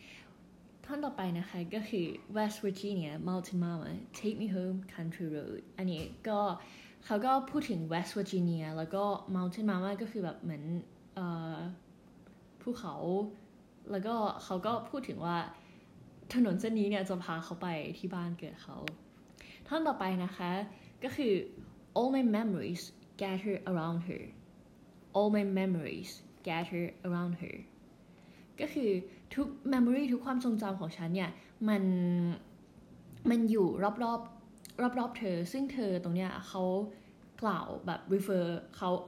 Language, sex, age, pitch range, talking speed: English, female, 10-29, 180-215 Hz, 50 wpm